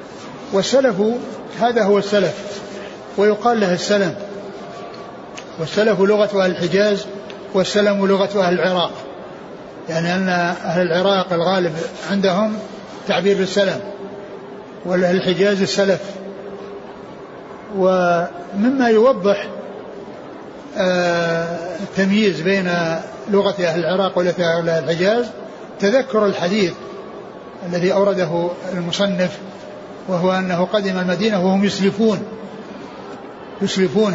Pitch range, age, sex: 185-210 Hz, 60-79, male